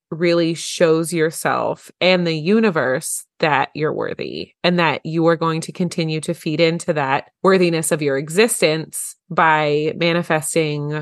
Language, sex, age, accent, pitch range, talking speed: English, female, 20-39, American, 155-185 Hz, 140 wpm